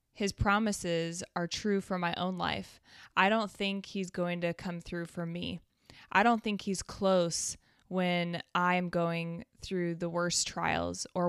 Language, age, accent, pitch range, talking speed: English, 20-39, American, 175-195 Hz, 165 wpm